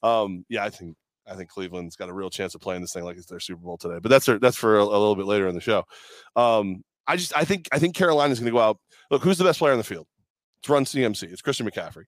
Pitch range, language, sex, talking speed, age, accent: 105-130 Hz, English, male, 300 wpm, 20-39, American